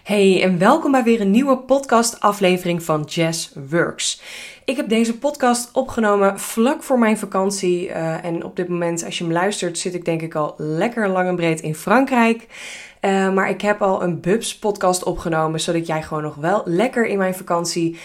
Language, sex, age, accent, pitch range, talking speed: Dutch, female, 20-39, Dutch, 175-225 Hz, 195 wpm